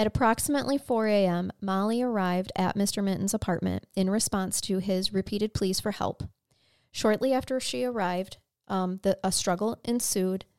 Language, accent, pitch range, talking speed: English, American, 190-220 Hz, 145 wpm